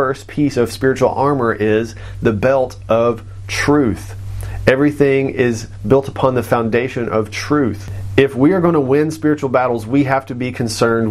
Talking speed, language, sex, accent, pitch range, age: 160 wpm, English, male, American, 110-140 Hz, 40-59